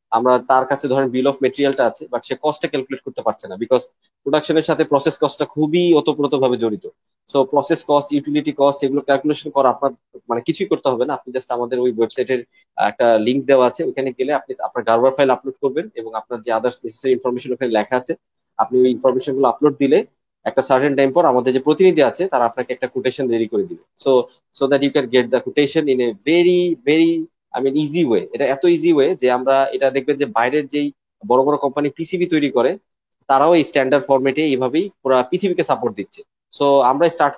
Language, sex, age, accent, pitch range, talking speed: Bengali, male, 20-39, native, 125-155 Hz, 60 wpm